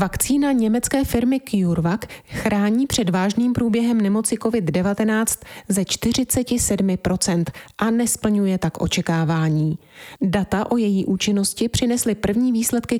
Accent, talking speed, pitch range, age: native, 105 wpm, 175-225 Hz, 30-49